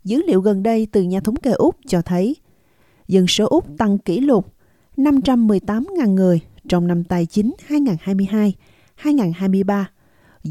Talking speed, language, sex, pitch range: 135 wpm, Vietnamese, female, 180-255 Hz